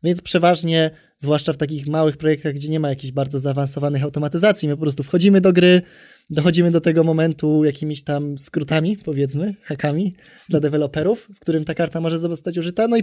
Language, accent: Polish, native